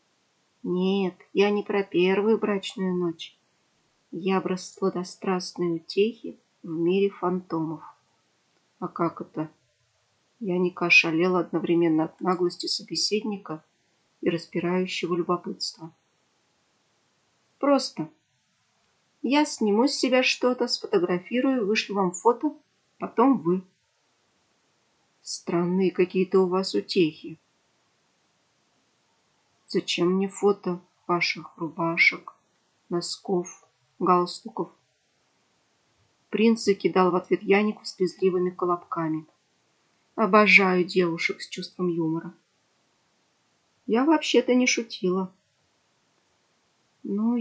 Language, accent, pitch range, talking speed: Russian, native, 175-210 Hz, 85 wpm